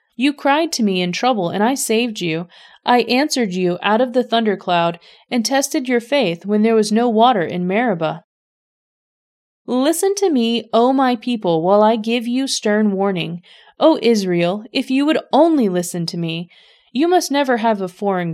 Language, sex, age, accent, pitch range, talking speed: English, female, 30-49, American, 200-275 Hz, 180 wpm